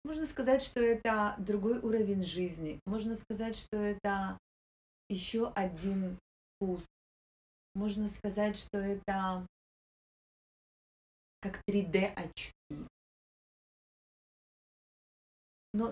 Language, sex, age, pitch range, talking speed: Russian, female, 30-49, 180-215 Hz, 85 wpm